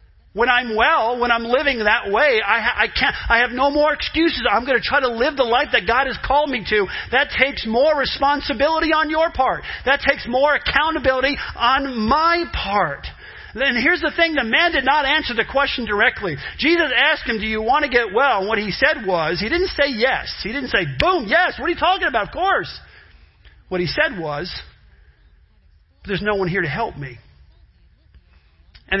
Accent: American